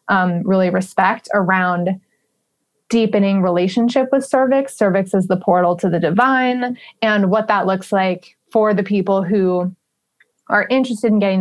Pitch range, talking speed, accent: 185-225 Hz, 145 wpm, American